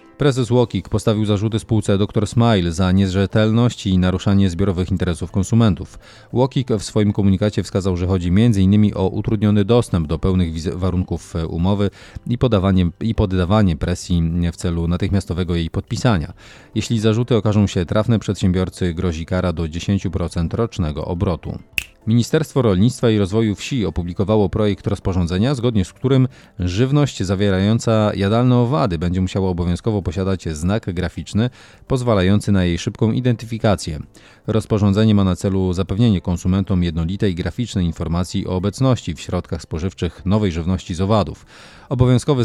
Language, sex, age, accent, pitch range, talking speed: Polish, male, 30-49, native, 90-110 Hz, 135 wpm